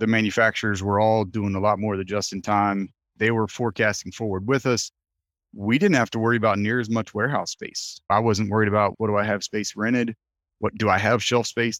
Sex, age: male, 30-49